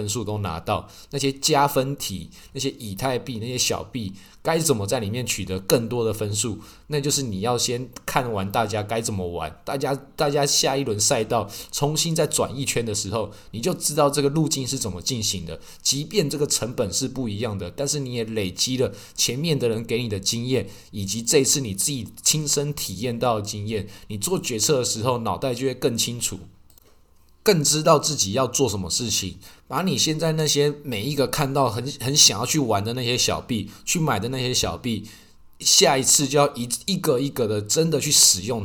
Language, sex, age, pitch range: Chinese, male, 20-39, 105-140 Hz